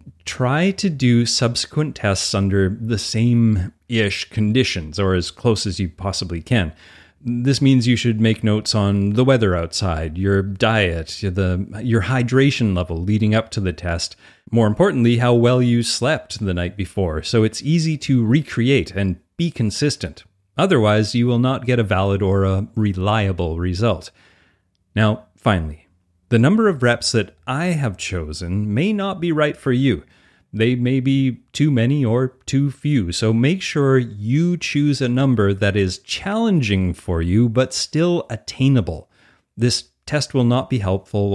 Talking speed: 160 wpm